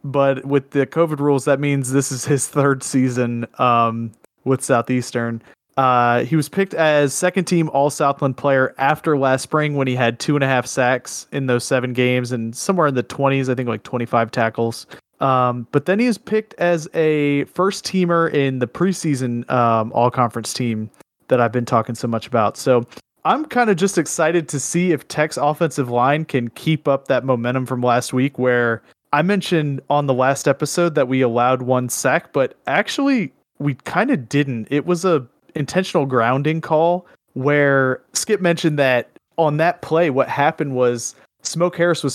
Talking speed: 175 wpm